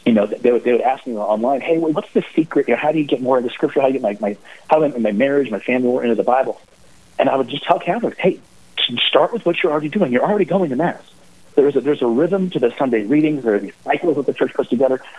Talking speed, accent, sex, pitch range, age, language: 290 wpm, American, male, 125-190 Hz, 40-59, English